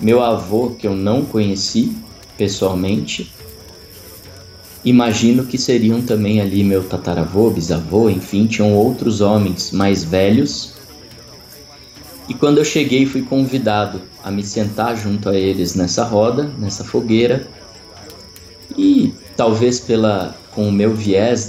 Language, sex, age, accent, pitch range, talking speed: Portuguese, male, 20-39, Brazilian, 100-130 Hz, 125 wpm